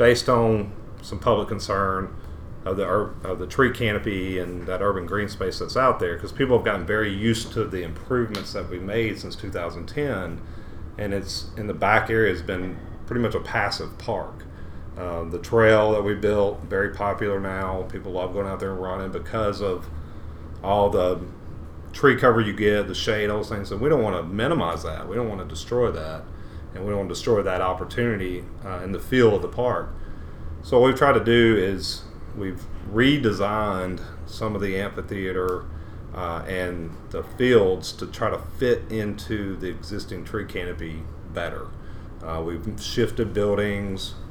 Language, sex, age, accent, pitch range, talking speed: English, male, 40-59, American, 85-105 Hz, 180 wpm